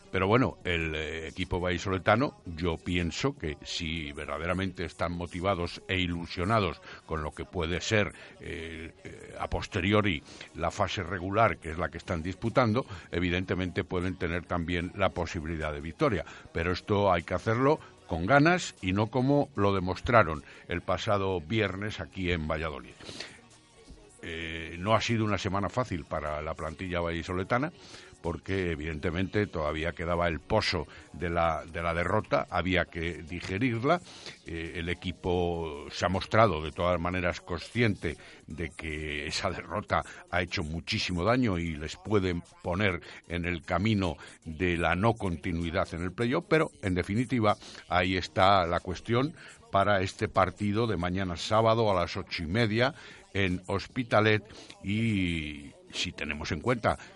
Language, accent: Spanish, Spanish